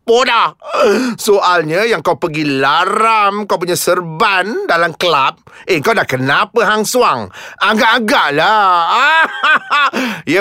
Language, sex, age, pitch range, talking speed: Malay, male, 30-49, 205-255 Hz, 105 wpm